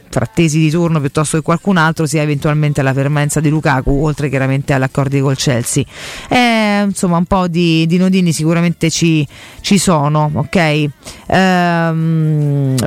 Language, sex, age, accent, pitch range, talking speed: Italian, female, 30-49, native, 150-200 Hz, 150 wpm